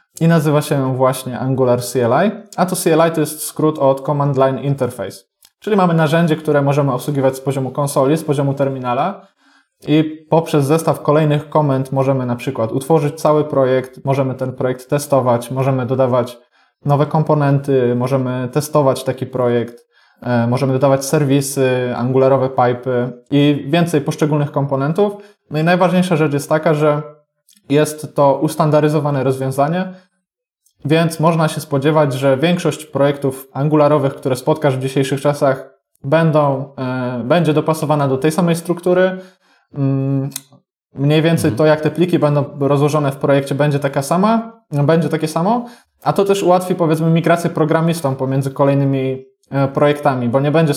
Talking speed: 145 wpm